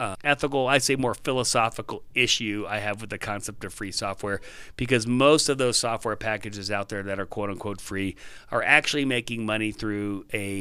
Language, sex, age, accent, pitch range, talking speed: English, male, 40-59, American, 105-130 Hz, 190 wpm